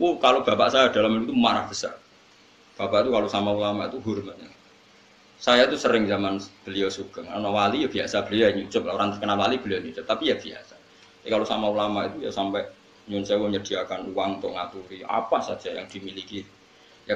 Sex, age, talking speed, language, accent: male, 20-39, 190 wpm, Indonesian, native